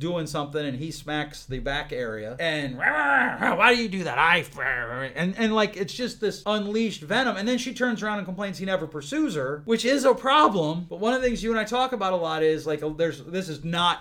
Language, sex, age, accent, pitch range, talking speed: English, male, 30-49, American, 150-215 Hz, 245 wpm